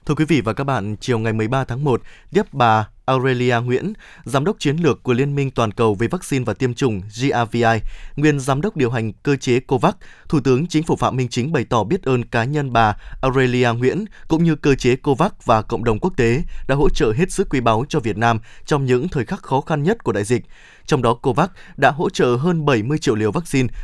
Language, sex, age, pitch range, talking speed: Vietnamese, male, 20-39, 120-150 Hz, 240 wpm